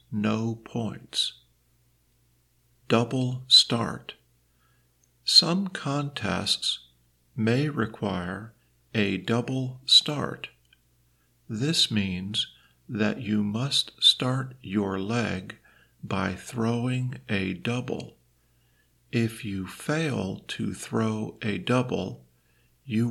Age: 50-69